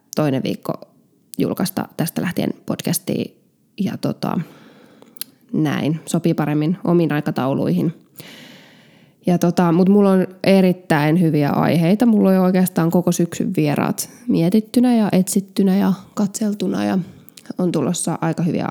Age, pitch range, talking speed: 20-39, 165-215 Hz, 115 wpm